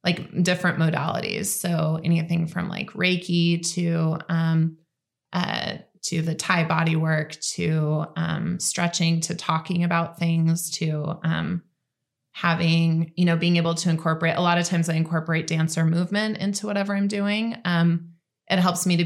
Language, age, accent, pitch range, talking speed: English, 20-39, American, 160-180 Hz, 155 wpm